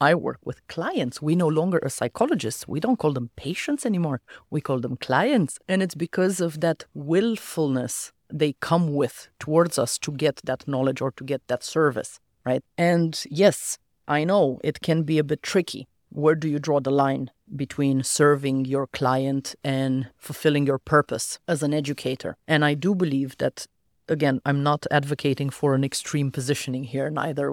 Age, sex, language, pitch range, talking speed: 30-49, female, English, 135-160 Hz, 180 wpm